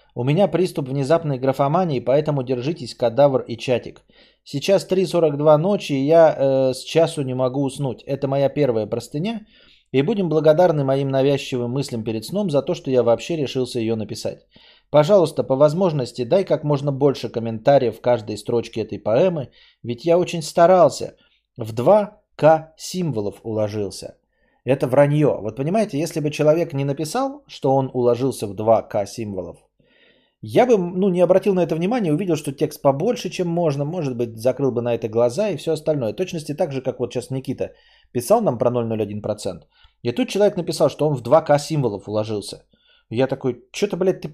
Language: Bulgarian